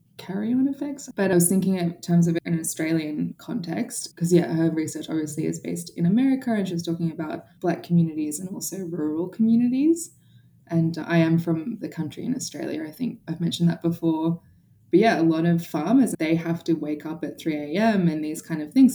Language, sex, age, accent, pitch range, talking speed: English, female, 20-39, Australian, 155-185 Hz, 205 wpm